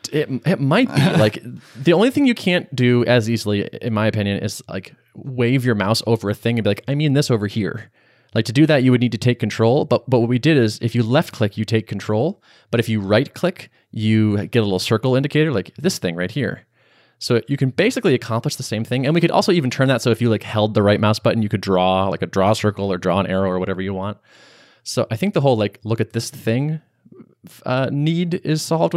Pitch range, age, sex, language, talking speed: 105-140 Hz, 20-39, male, English, 255 wpm